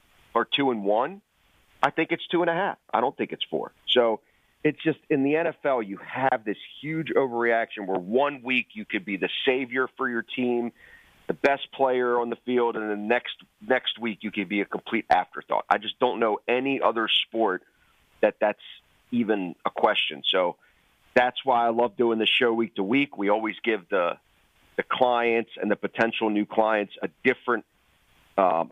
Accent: American